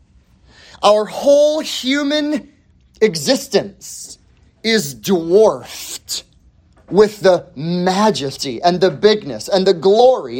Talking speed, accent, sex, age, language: 85 wpm, American, male, 30-49, English